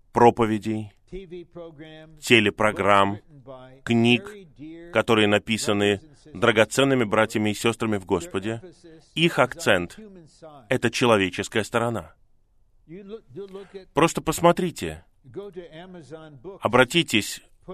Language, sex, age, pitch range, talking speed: Russian, male, 30-49, 105-150 Hz, 70 wpm